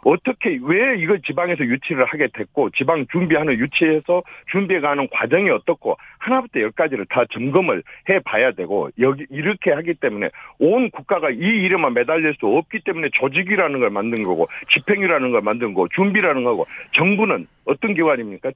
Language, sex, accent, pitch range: Korean, male, native, 155-230 Hz